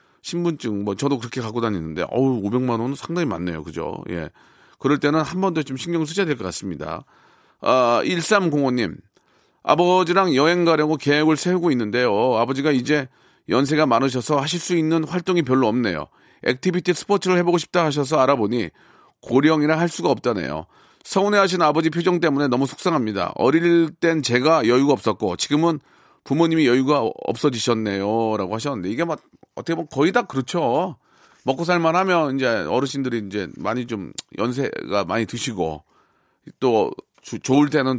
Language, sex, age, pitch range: Korean, male, 40-59, 115-170 Hz